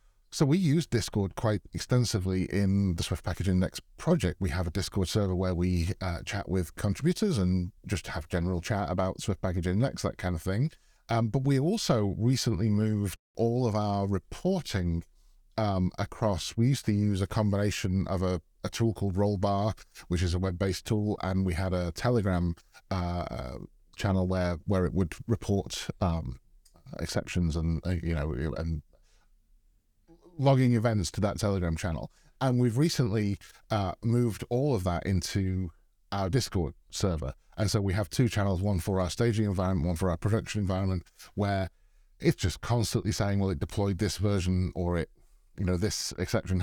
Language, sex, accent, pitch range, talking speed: English, male, British, 90-115 Hz, 170 wpm